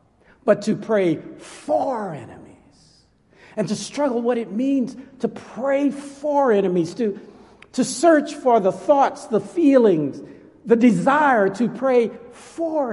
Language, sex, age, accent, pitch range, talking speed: English, male, 60-79, American, 150-250 Hz, 130 wpm